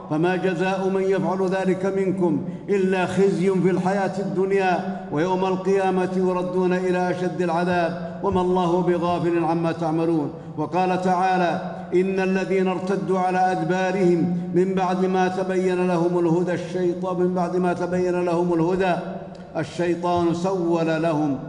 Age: 50-69